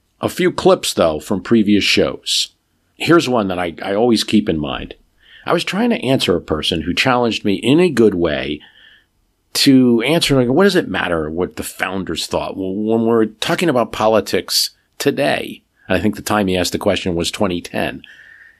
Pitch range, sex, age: 90-120 Hz, male, 50-69